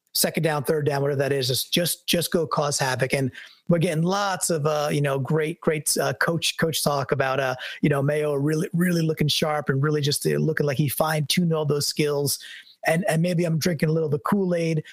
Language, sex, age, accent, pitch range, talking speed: English, male, 30-49, American, 145-170 Hz, 220 wpm